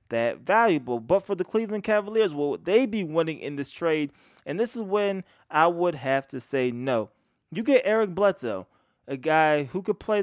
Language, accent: English, American